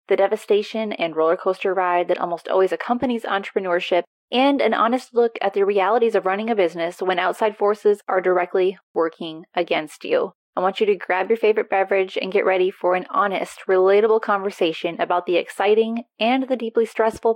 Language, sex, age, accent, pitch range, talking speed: English, female, 20-39, American, 180-225 Hz, 185 wpm